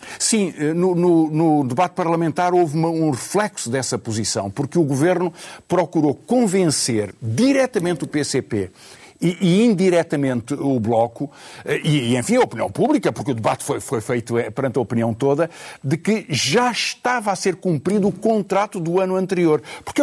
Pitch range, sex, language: 135-195 Hz, male, Portuguese